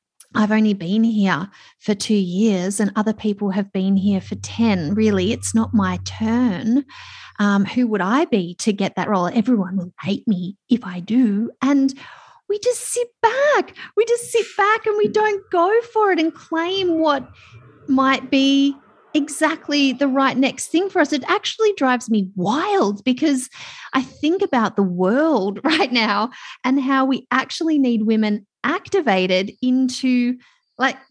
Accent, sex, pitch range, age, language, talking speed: Australian, female, 205-305 Hz, 30-49, English, 165 wpm